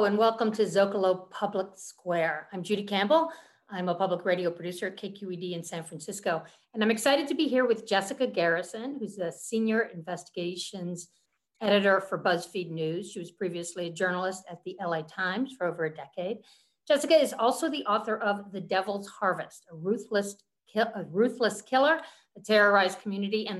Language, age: English, 50-69